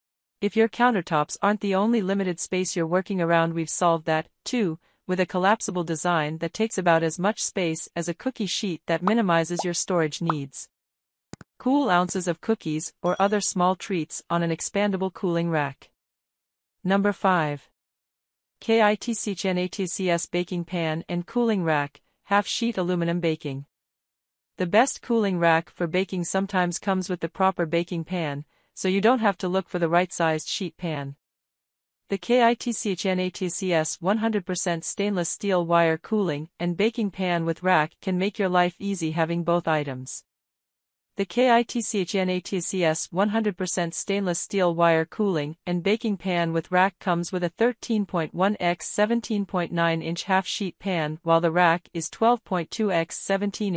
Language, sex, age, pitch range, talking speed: English, female, 40-59, 165-200 Hz, 150 wpm